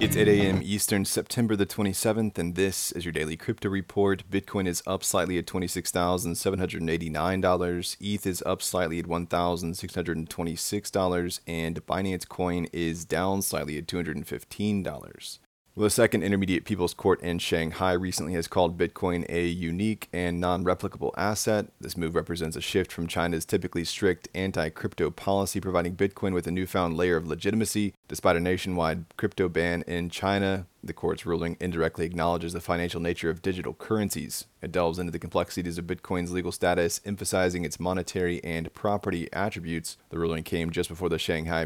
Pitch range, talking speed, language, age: 85-95 Hz, 155 wpm, English, 30-49